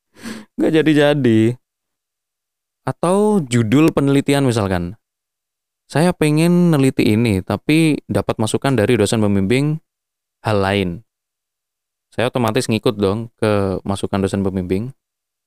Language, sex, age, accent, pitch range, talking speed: Indonesian, male, 20-39, native, 105-135 Hz, 100 wpm